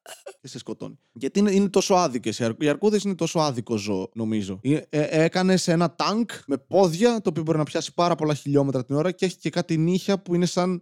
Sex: male